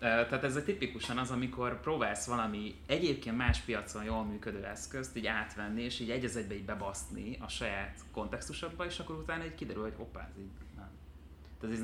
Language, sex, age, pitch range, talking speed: Hungarian, male, 30-49, 95-115 Hz, 165 wpm